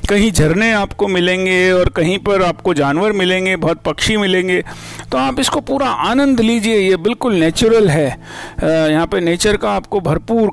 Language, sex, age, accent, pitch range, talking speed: Hindi, male, 50-69, native, 165-225 Hz, 165 wpm